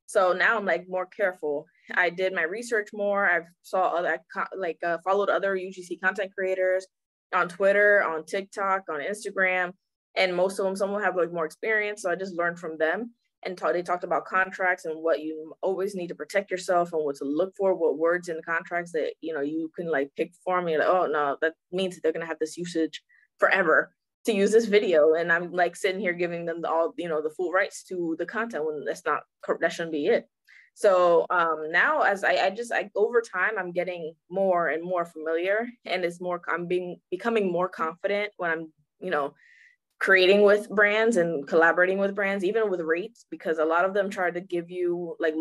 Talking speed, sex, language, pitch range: 220 wpm, female, English, 165-195 Hz